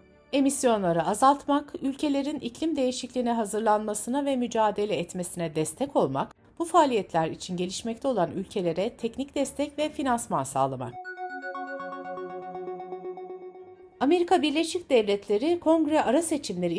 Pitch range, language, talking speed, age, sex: 185-275 Hz, Turkish, 100 wpm, 60-79, female